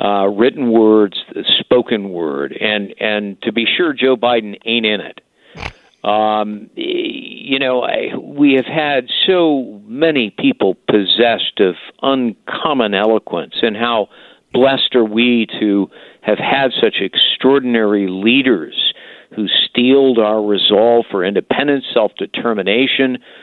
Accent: American